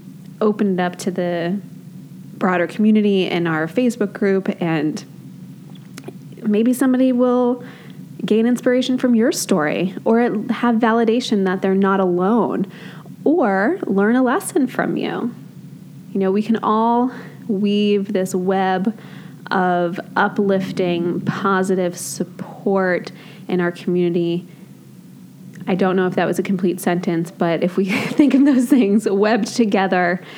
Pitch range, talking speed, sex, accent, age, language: 180-225 Hz, 130 wpm, female, American, 20-39, English